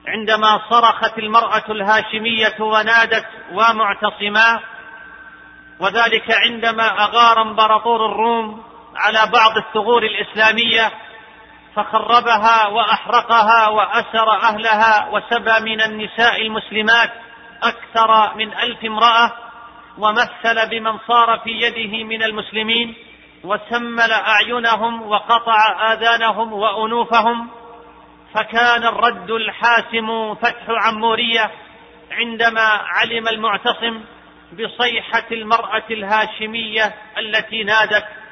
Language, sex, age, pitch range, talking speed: Arabic, male, 40-59, 220-235 Hz, 80 wpm